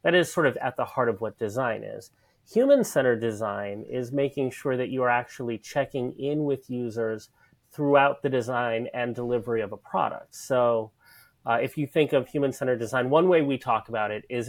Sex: male